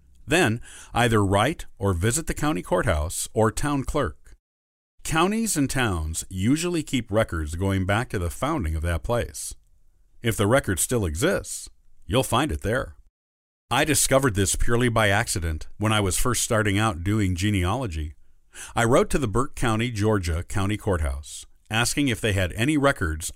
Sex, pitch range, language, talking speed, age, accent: male, 80-120 Hz, English, 160 wpm, 50-69, American